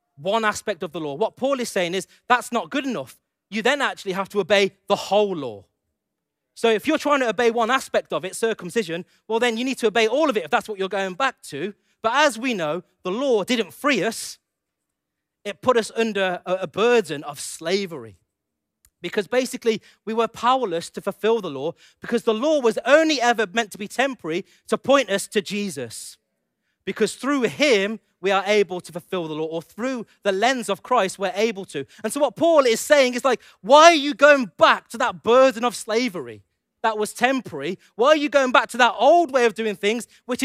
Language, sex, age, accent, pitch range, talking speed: English, male, 30-49, British, 195-260 Hz, 215 wpm